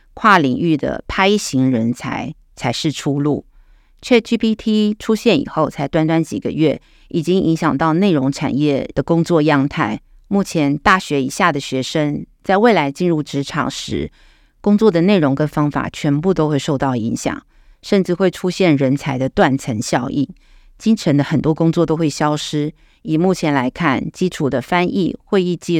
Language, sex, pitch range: Chinese, female, 135-170 Hz